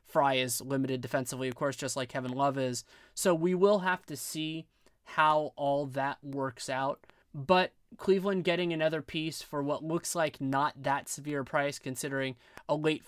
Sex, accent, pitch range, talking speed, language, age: male, American, 135-160 Hz, 175 wpm, English, 20-39